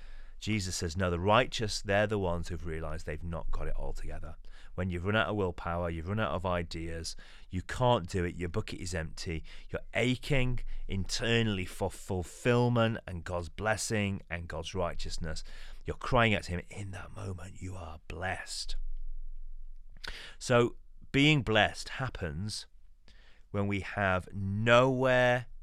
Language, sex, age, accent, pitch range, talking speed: English, male, 30-49, British, 85-105 Hz, 150 wpm